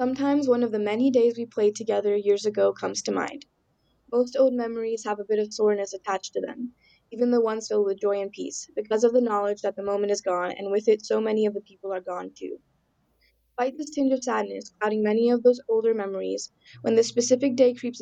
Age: 10-29